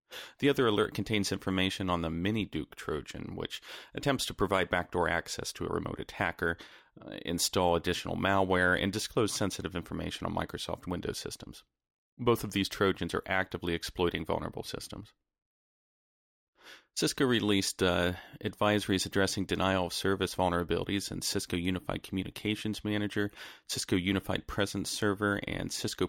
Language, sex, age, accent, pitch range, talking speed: English, male, 40-59, American, 90-105 Hz, 135 wpm